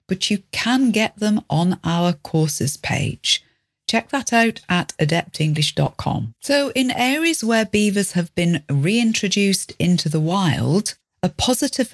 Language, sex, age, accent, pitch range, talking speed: English, female, 40-59, British, 150-205 Hz, 135 wpm